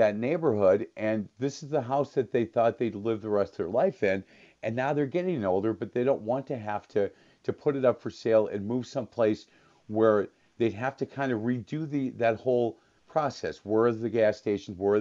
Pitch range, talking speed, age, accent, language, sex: 105-130 Hz, 230 wpm, 50-69, American, English, male